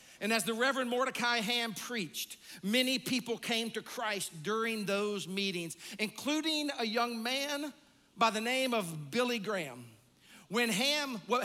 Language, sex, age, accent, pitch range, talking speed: English, male, 50-69, American, 190-250 Hz, 135 wpm